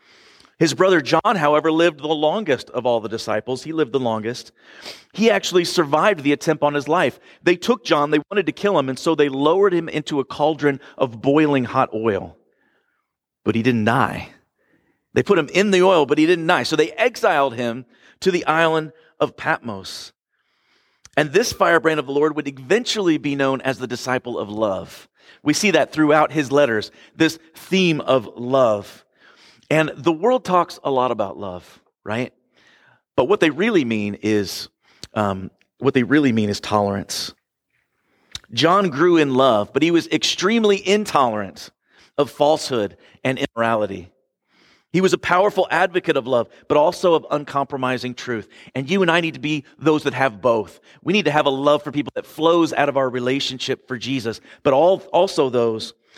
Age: 40-59